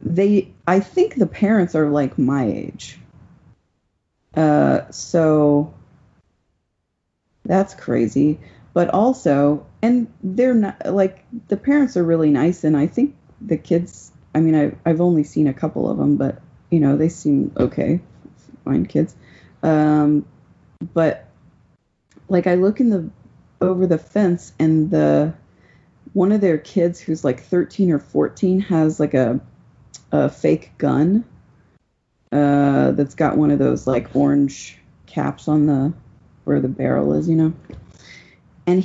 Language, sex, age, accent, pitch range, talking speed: English, female, 30-49, American, 145-185 Hz, 140 wpm